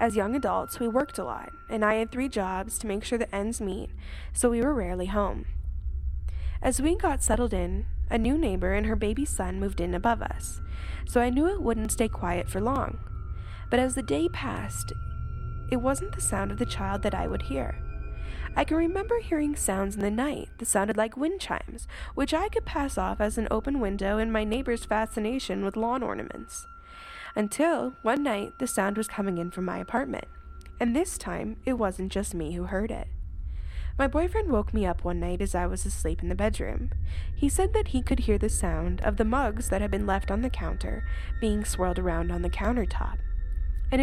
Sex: female